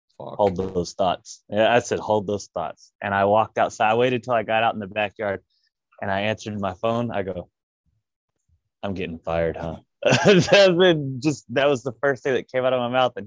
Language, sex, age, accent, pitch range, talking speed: Spanish, male, 20-39, American, 105-130 Hz, 215 wpm